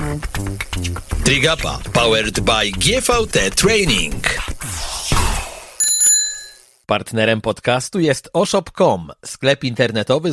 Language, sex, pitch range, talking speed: Polish, male, 110-150 Hz, 65 wpm